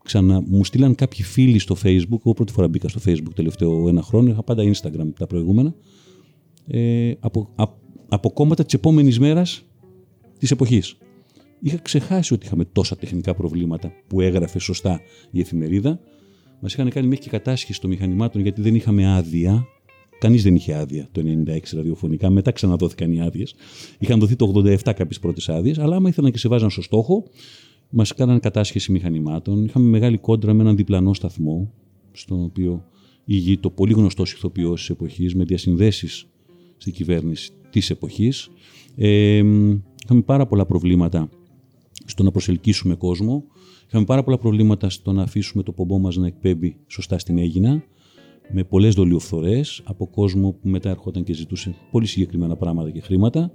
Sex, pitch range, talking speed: male, 90-120 Hz, 160 wpm